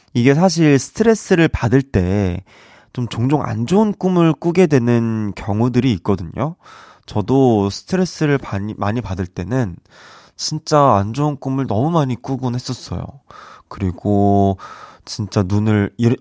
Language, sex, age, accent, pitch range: Korean, male, 20-39, native, 100-145 Hz